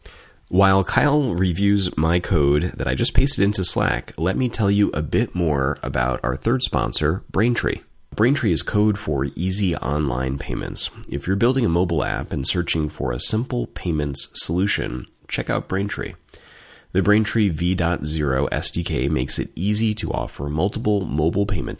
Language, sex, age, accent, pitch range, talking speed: English, male, 30-49, American, 70-95 Hz, 160 wpm